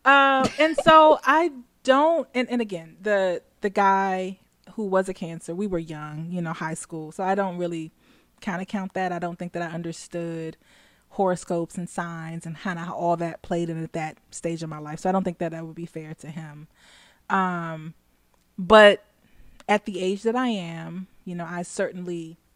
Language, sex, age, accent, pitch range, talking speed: English, female, 20-39, American, 165-195 Hz, 200 wpm